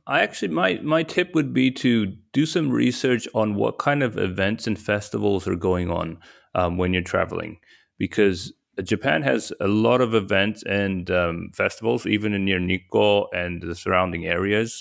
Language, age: English, 30-49